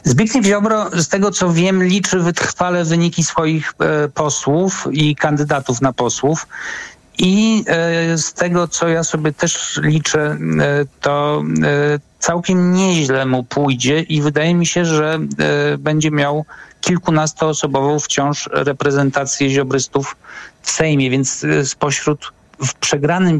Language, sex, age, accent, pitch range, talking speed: Polish, male, 50-69, native, 140-165 Hz, 130 wpm